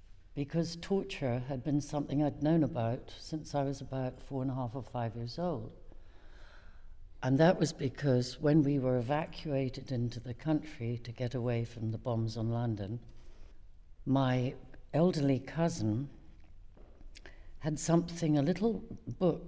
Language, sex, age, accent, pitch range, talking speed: English, female, 60-79, British, 110-150 Hz, 145 wpm